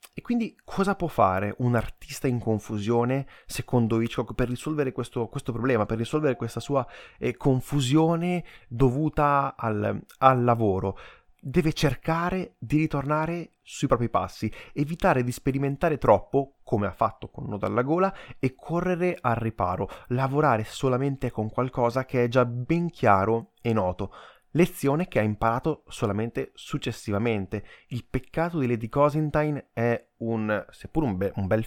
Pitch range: 110-140 Hz